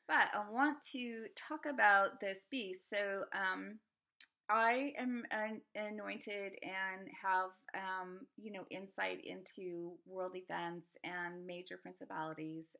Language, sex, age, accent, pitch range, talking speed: English, female, 30-49, American, 175-215 Hz, 120 wpm